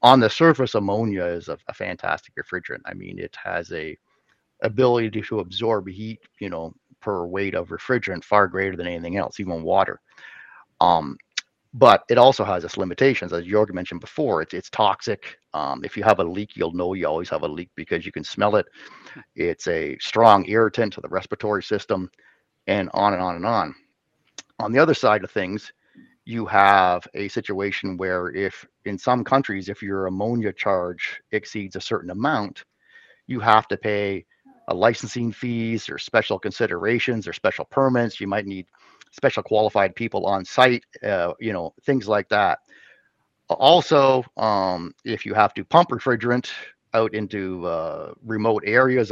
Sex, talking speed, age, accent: male, 170 wpm, 40-59, American